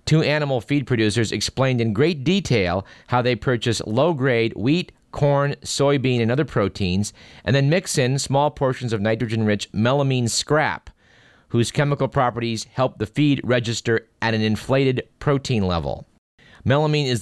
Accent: American